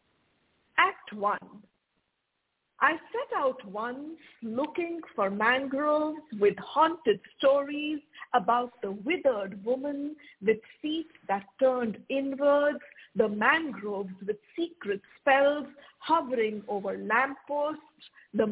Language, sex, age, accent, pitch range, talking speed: English, female, 50-69, Indian, 215-295 Hz, 95 wpm